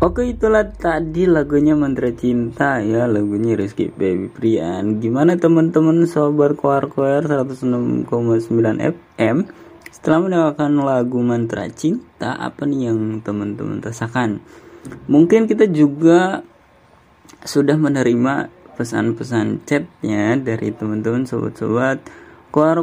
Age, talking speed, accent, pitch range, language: 20-39, 105 wpm, native, 115-150 Hz, Indonesian